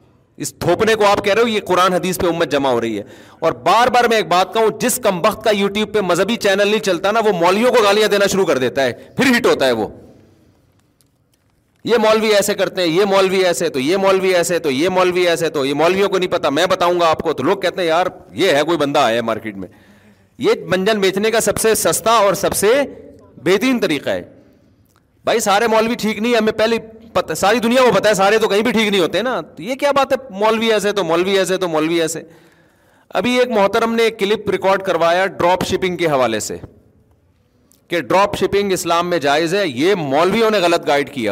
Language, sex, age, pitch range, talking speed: Urdu, male, 40-59, 160-215 Hz, 230 wpm